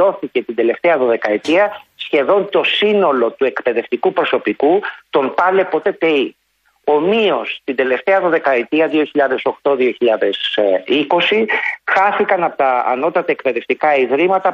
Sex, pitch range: male, 135-200 Hz